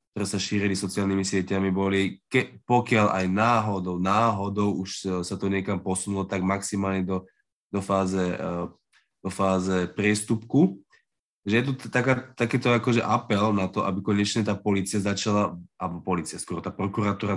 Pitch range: 95-105 Hz